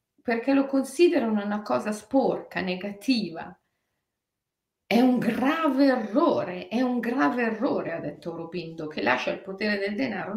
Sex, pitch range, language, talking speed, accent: female, 190-290 Hz, Italian, 140 wpm, native